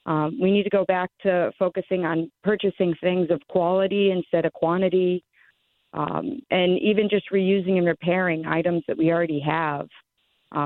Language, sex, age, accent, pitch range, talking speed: English, female, 40-59, American, 165-190 Hz, 165 wpm